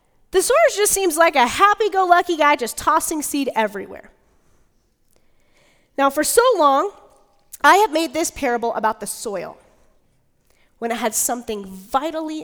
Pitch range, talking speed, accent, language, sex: 215-280 Hz, 140 wpm, American, English, female